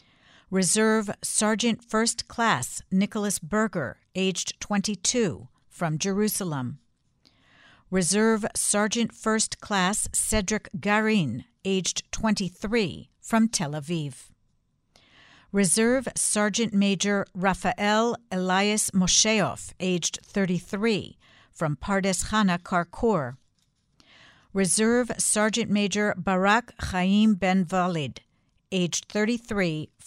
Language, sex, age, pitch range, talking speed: English, female, 60-79, 175-220 Hz, 85 wpm